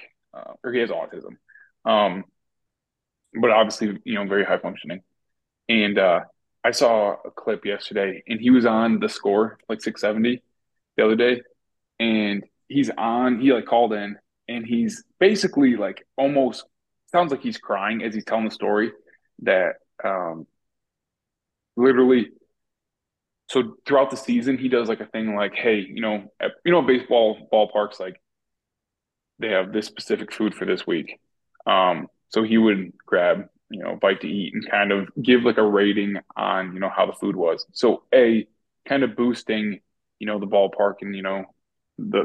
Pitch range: 100-125 Hz